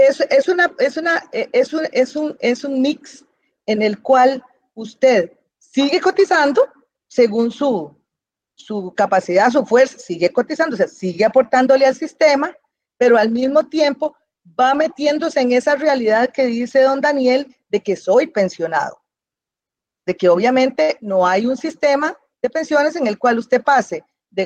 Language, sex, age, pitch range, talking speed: Spanish, female, 40-59, 195-275 Hz, 155 wpm